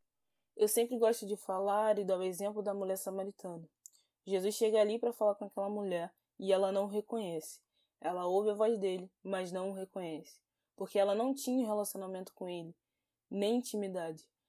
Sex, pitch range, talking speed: female, 185-215 Hz, 180 wpm